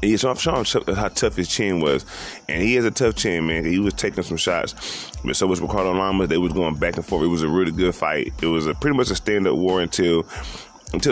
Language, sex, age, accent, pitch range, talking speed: English, male, 20-39, American, 80-100 Hz, 260 wpm